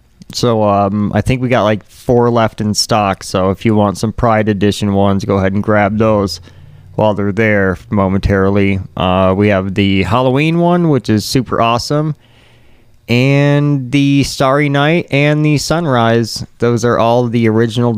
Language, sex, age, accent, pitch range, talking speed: English, male, 30-49, American, 105-130 Hz, 165 wpm